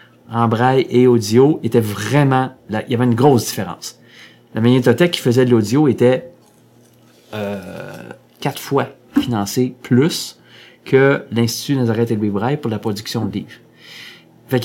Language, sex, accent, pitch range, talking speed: French, male, Canadian, 115-150 Hz, 150 wpm